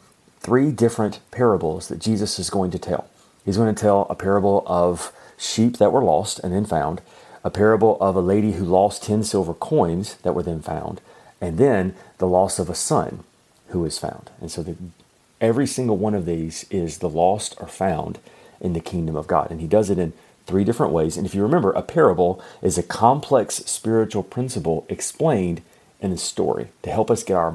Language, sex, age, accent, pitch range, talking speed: English, male, 40-59, American, 90-115 Hz, 205 wpm